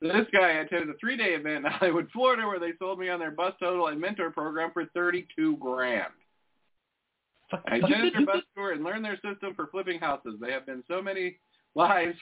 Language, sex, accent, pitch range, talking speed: English, male, American, 145-195 Hz, 200 wpm